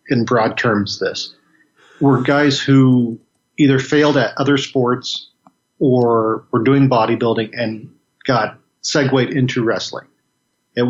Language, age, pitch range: English, 40-59, 115-140 Hz